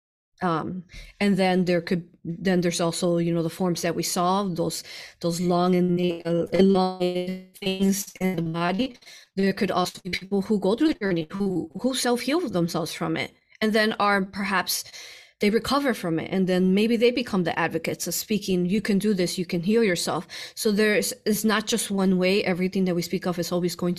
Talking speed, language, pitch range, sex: 205 wpm, English, 175-205 Hz, female